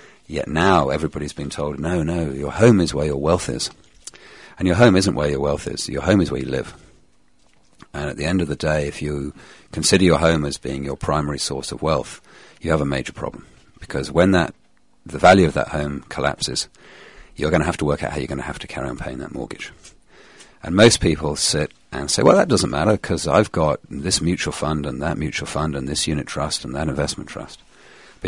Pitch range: 70-85 Hz